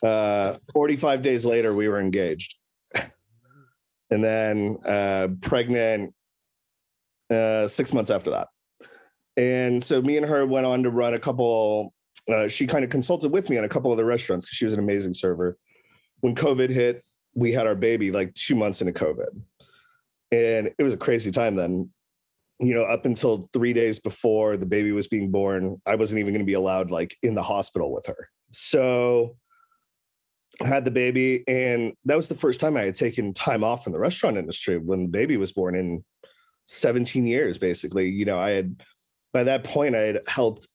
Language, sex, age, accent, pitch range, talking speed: English, male, 30-49, American, 100-125 Hz, 190 wpm